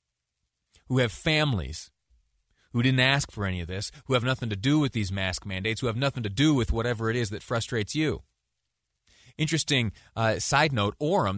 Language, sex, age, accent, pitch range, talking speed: English, male, 30-49, American, 105-155 Hz, 190 wpm